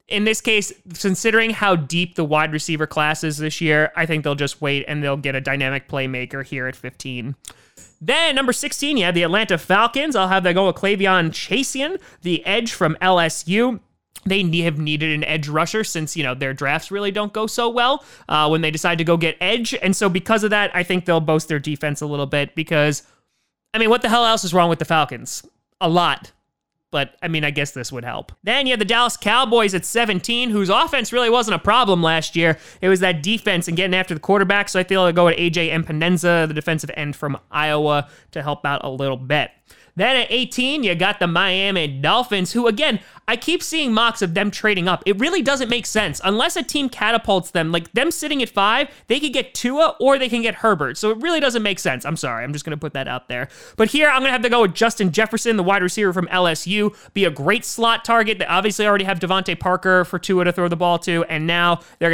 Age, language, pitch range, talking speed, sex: 20-39, English, 155-220 Hz, 240 wpm, male